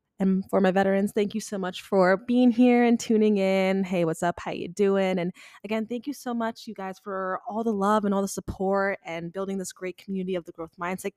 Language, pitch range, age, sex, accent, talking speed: English, 175-200 Hz, 20-39, female, American, 240 wpm